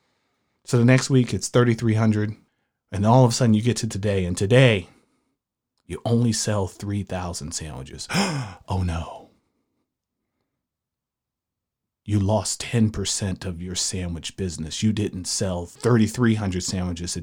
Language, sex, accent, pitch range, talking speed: English, male, American, 95-120 Hz, 130 wpm